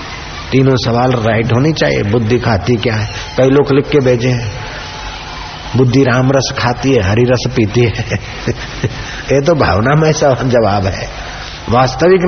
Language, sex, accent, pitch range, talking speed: Hindi, male, native, 110-135 Hz, 145 wpm